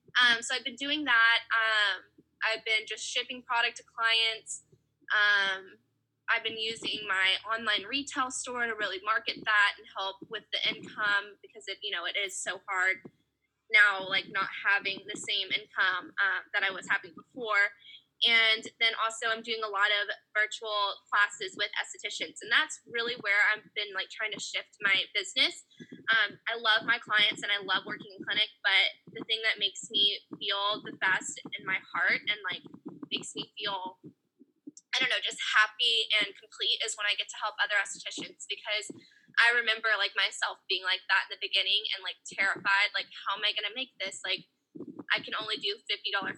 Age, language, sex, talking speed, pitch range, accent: 10-29, English, female, 190 wpm, 200-240 Hz, American